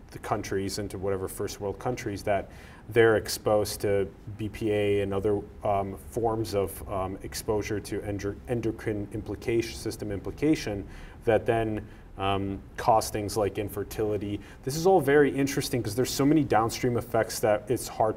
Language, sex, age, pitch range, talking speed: English, male, 30-49, 100-115 Hz, 150 wpm